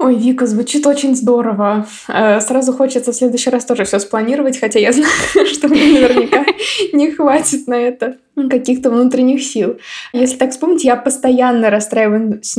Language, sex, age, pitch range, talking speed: Russian, female, 20-39, 220-265 Hz, 155 wpm